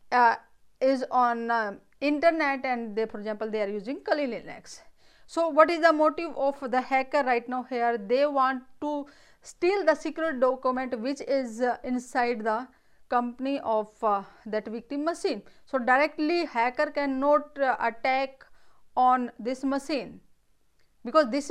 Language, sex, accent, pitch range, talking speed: English, female, Indian, 230-295 Hz, 150 wpm